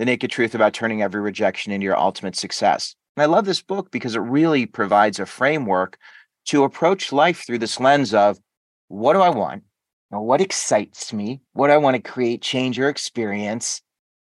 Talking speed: 190 wpm